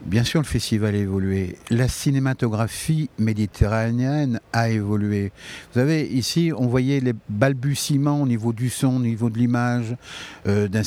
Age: 60-79